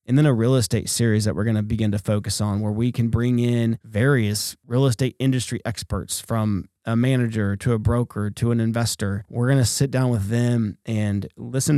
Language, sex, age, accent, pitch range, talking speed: English, male, 30-49, American, 105-125 Hz, 215 wpm